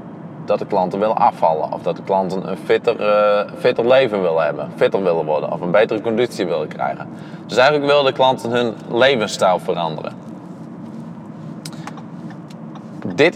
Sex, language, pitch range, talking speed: male, Dutch, 110-155 Hz, 155 wpm